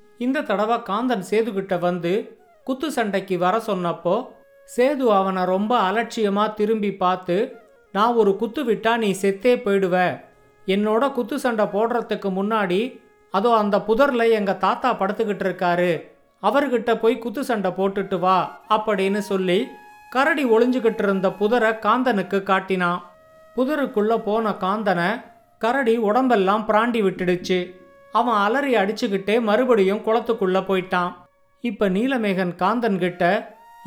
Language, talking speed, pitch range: Tamil, 110 wpm, 195-235 Hz